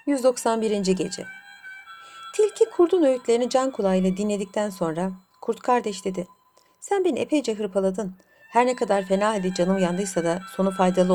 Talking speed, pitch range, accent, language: 140 wpm, 185-280 Hz, native, Turkish